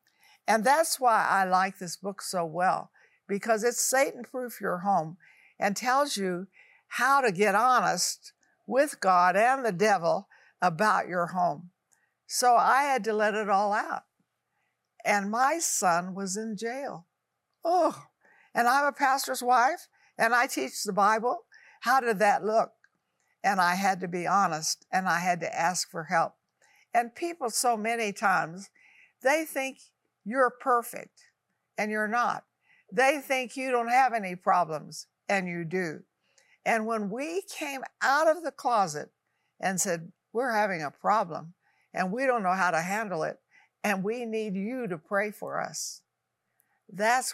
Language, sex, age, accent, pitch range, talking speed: English, female, 60-79, American, 180-255 Hz, 160 wpm